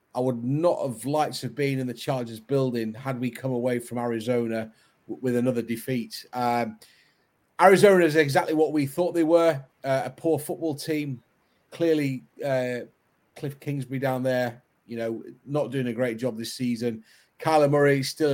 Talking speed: 175 wpm